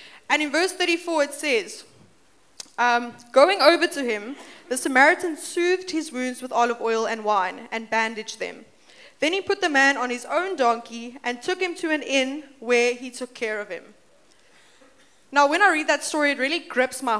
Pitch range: 240-310 Hz